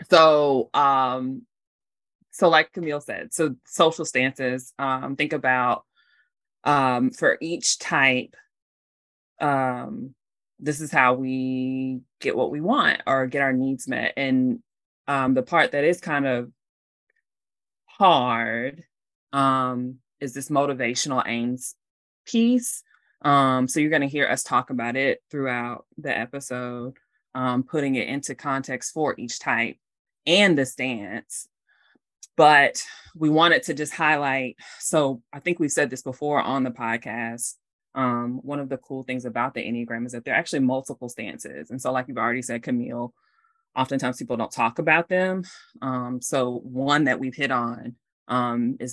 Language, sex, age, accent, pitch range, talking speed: English, female, 20-39, American, 125-150 Hz, 150 wpm